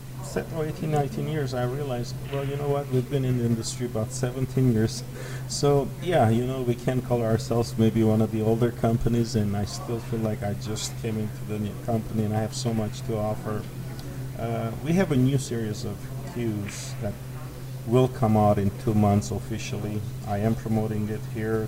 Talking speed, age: 200 wpm, 40-59